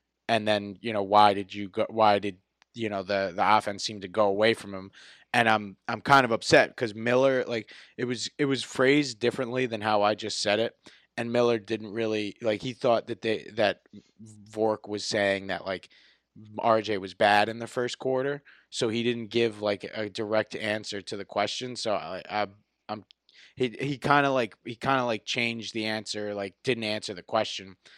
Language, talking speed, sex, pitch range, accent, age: English, 205 wpm, male, 105-115 Hz, American, 20-39